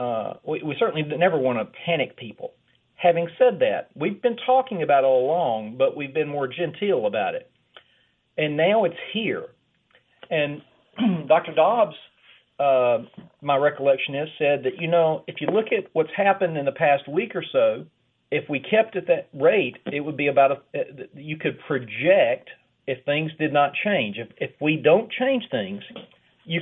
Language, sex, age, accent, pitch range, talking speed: English, male, 40-59, American, 145-220 Hz, 180 wpm